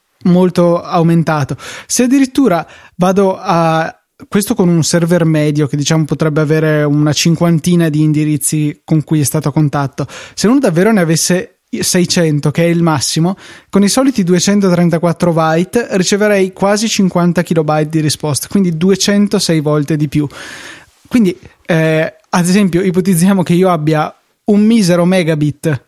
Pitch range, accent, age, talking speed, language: 155-185 Hz, native, 20-39, 140 wpm, Italian